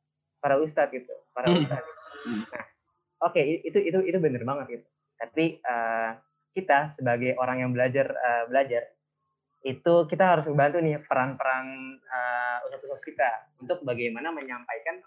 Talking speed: 145 wpm